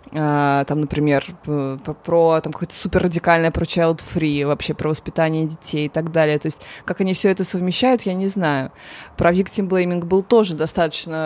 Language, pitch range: Russian, 155-185 Hz